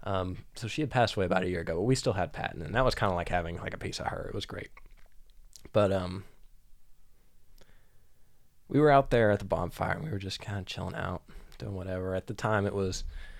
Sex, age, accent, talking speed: male, 20-39, American, 240 wpm